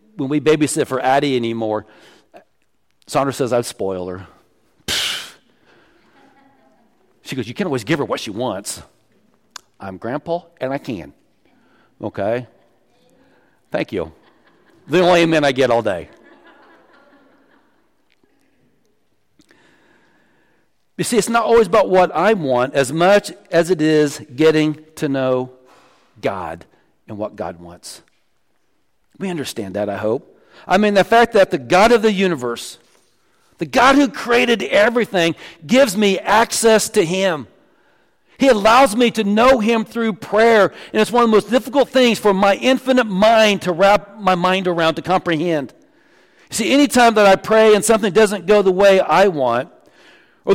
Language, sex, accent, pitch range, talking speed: English, male, American, 150-225 Hz, 150 wpm